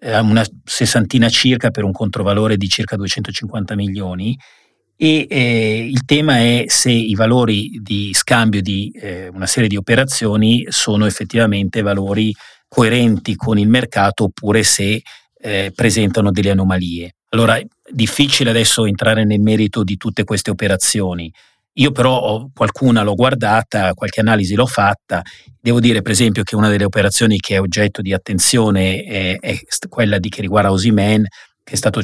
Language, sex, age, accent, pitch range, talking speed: Italian, male, 40-59, native, 100-120 Hz, 155 wpm